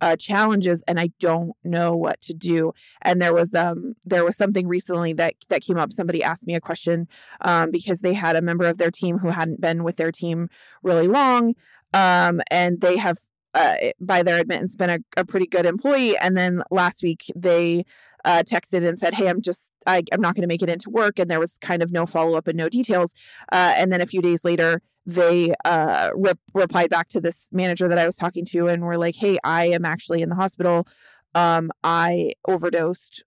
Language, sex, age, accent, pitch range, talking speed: English, female, 30-49, American, 170-185 Hz, 215 wpm